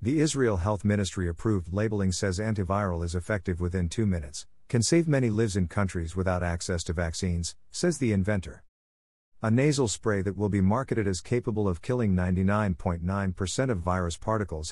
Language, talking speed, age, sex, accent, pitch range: English, 165 wpm, 50-69, male, American, 90-110 Hz